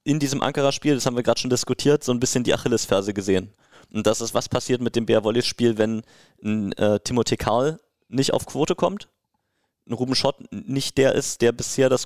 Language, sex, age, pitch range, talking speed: German, male, 30-49, 115-135 Hz, 210 wpm